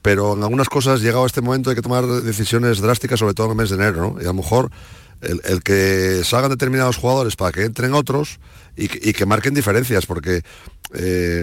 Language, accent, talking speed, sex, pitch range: Spanish, Spanish, 225 wpm, male, 105-130 Hz